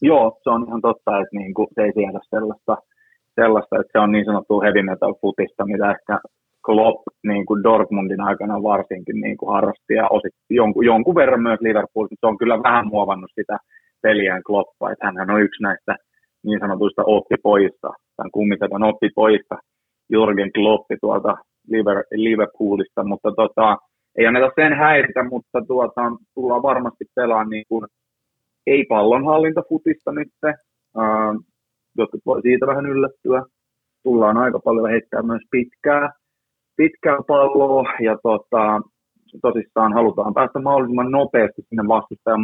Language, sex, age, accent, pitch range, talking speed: Finnish, male, 30-49, native, 105-125 Hz, 145 wpm